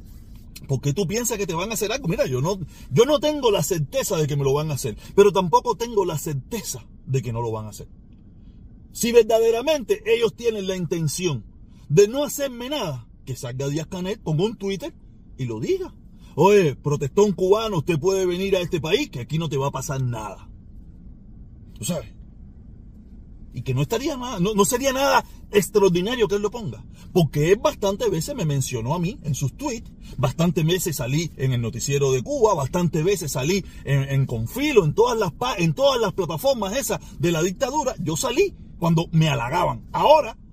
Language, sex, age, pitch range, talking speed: Spanish, male, 40-59, 140-205 Hz, 190 wpm